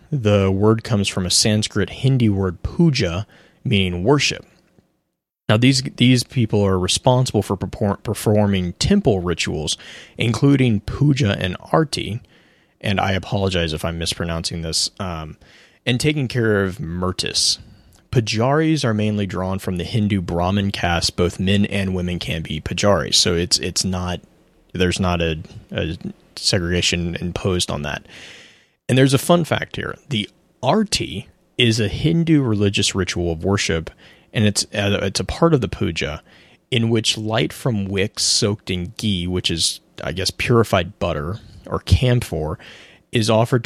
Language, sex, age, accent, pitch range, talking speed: English, male, 30-49, American, 90-115 Hz, 150 wpm